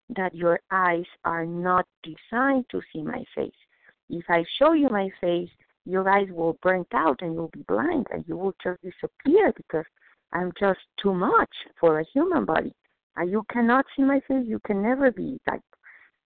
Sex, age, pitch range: female, 50-69, 170-225 Hz